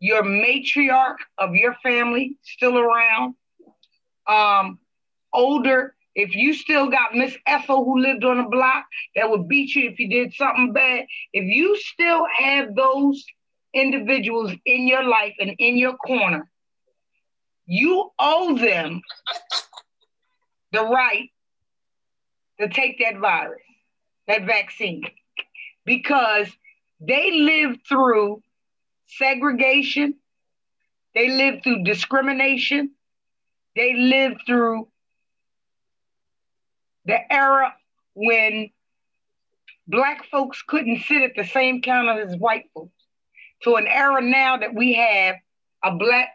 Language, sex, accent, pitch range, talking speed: English, female, American, 220-275 Hz, 115 wpm